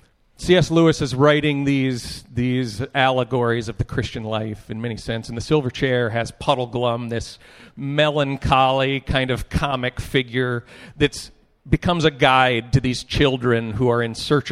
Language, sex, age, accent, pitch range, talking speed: English, male, 40-59, American, 115-145 Hz, 160 wpm